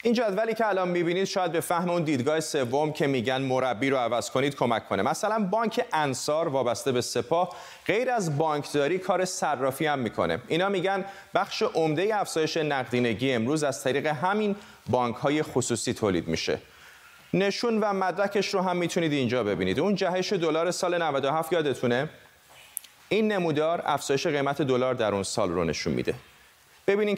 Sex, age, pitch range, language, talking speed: male, 30-49, 135-195 Hz, Persian, 160 wpm